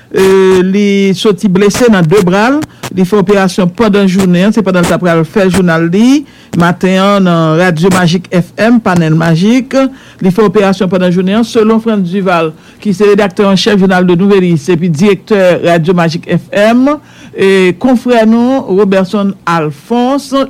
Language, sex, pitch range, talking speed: English, male, 180-210 Hz, 160 wpm